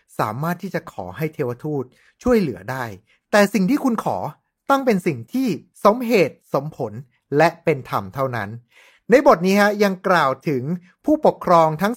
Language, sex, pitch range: Thai, male, 150-205 Hz